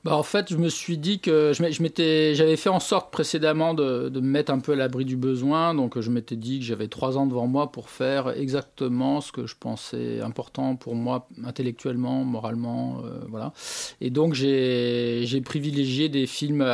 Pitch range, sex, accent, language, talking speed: 120-150 Hz, male, French, French, 200 wpm